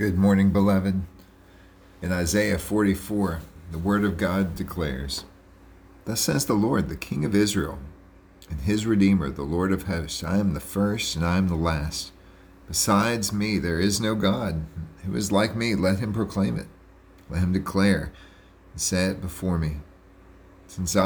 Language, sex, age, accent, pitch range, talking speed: English, male, 50-69, American, 90-100 Hz, 165 wpm